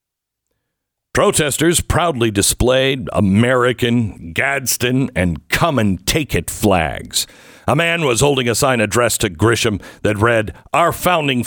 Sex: male